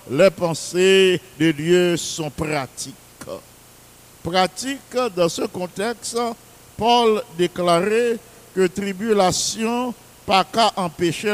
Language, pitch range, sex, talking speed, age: English, 165-200 Hz, male, 85 wpm, 50-69